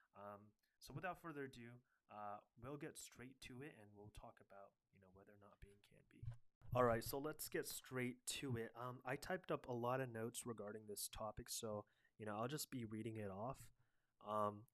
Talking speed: 210 wpm